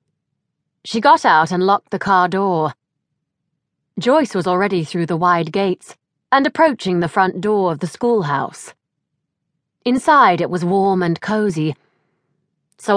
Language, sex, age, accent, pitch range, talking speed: English, female, 30-49, British, 160-220 Hz, 140 wpm